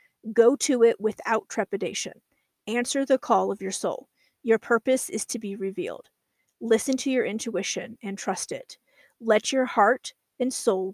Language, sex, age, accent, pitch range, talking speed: English, female, 40-59, American, 215-250 Hz, 160 wpm